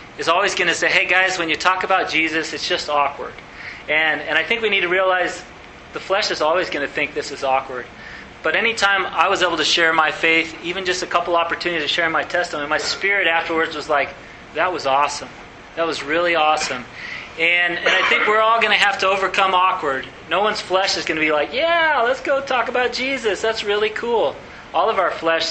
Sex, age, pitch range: male, 30-49, 160-195 Hz